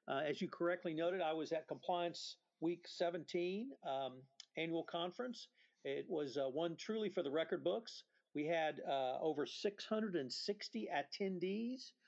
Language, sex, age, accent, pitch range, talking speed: English, male, 50-69, American, 145-185 Hz, 145 wpm